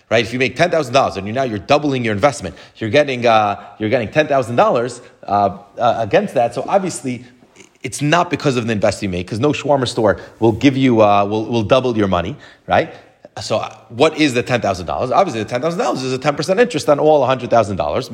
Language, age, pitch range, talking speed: English, 30-49, 115-140 Hz, 200 wpm